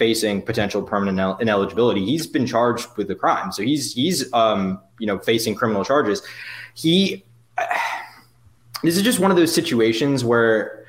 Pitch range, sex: 110-140 Hz, male